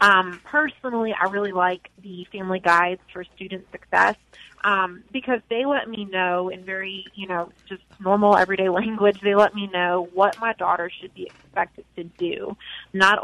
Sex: female